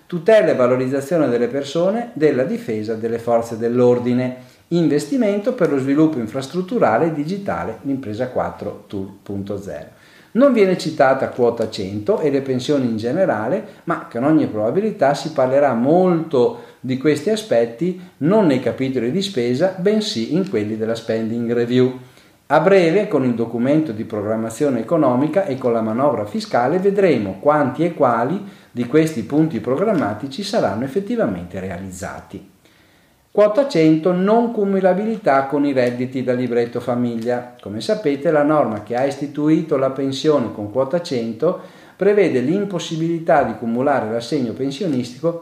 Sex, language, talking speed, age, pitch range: male, Italian, 135 wpm, 50-69, 115-175 Hz